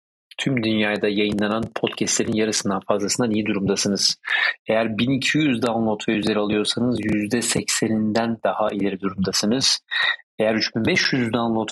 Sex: male